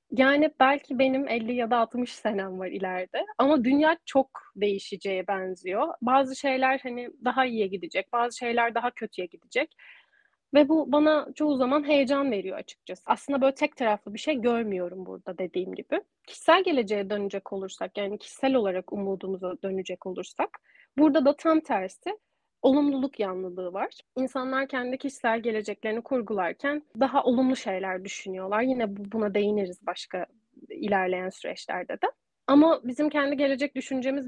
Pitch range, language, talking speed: 200-275 Hz, Turkish, 145 wpm